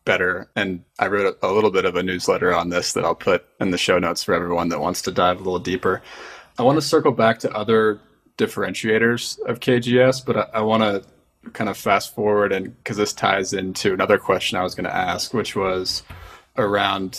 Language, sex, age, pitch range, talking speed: English, male, 20-39, 95-120 Hz, 220 wpm